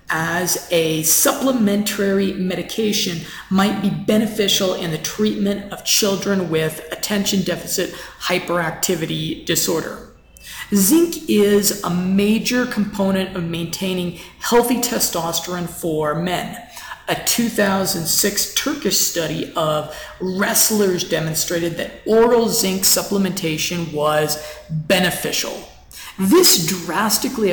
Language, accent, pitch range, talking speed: English, American, 165-210 Hz, 95 wpm